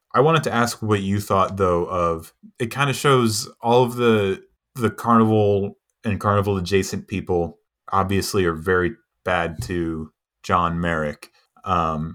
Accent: American